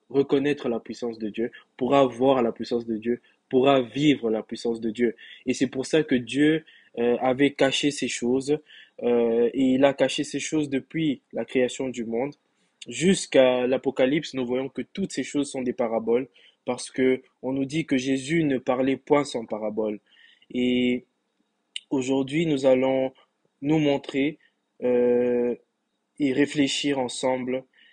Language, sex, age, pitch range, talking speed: French, male, 20-39, 125-145 Hz, 155 wpm